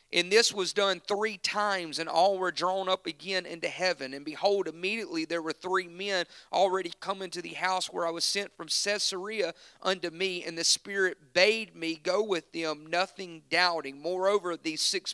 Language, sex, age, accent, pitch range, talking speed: English, male, 40-59, American, 165-195 Hz, 185 wpm